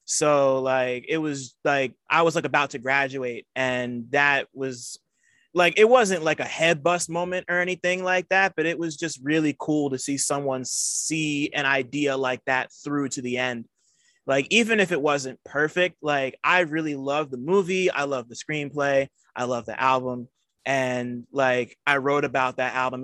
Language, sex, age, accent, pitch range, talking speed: English, male, 20-39, American, 130-160 Hz, 185 wpm